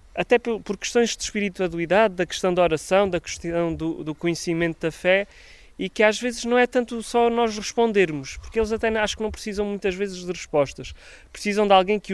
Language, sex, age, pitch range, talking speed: Portuguese, male, 20-39, 165-205 Hz, 200 wpm